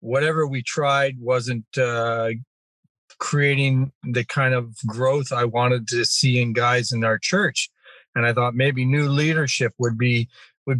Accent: American